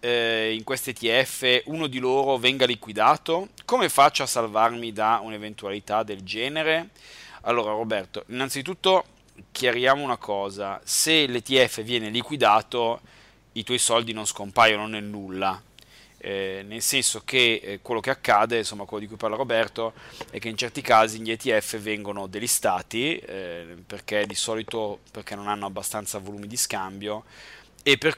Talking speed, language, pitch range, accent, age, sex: 145 wpm, Italian, 105-125 Hz, native, 30-49, male